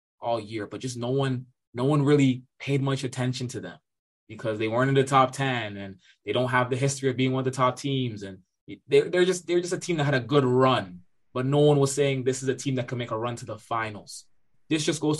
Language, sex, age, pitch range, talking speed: English, male, 20-39, 115-135 Hz, 265 wpm